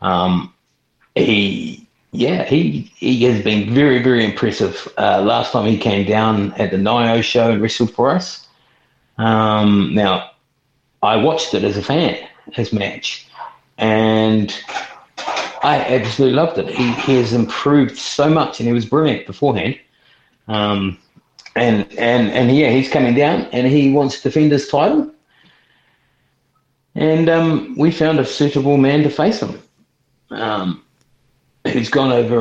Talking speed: 145 wpm